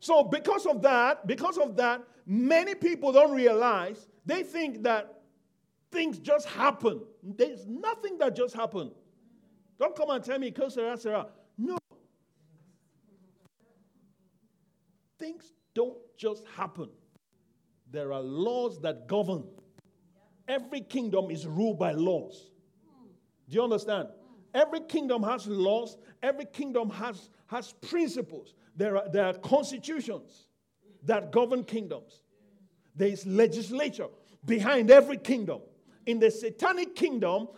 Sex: male